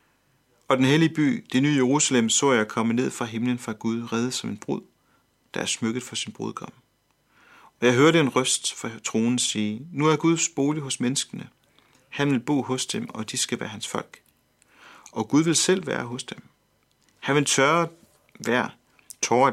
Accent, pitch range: native, 110-140 Hz